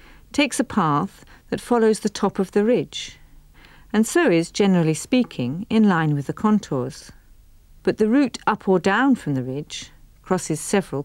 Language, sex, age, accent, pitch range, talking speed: English, female, 50-69, British, 150-215 Hz, 170 wpm